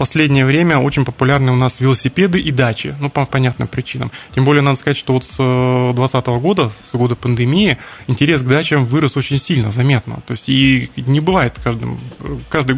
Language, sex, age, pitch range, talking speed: Russian, male, 20-39, 120-140 Hz, 180 wpm